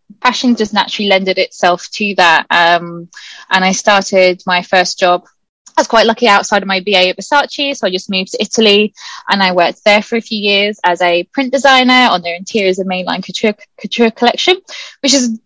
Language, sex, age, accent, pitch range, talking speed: English, female, 20-39, British, 190-240 Hz, 200 wpm